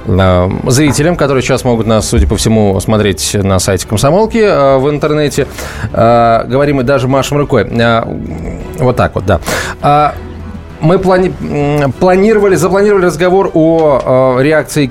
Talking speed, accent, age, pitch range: 120 wpm, native, 20-39, 115-170 Hz